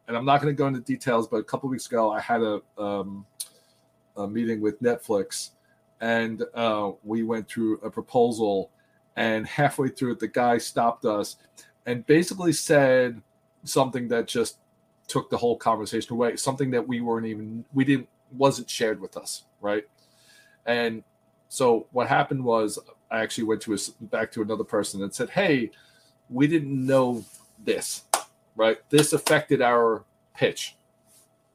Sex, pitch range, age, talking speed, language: male, 115-140 Hz, 40-59, 165 wpm, English